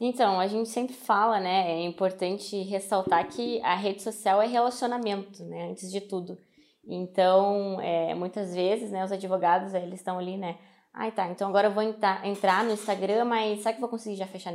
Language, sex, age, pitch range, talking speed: Portuguese, female, 20-39, 190-240 Hz, 200 wpm